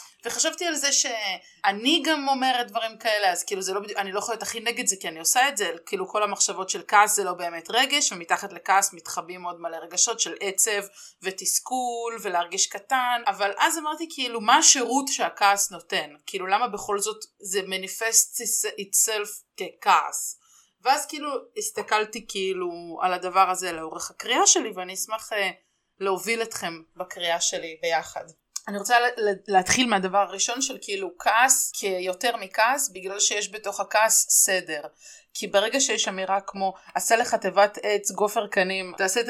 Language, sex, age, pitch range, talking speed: Hebrew, female, 20-39, 190-235 Hz, 165 wpm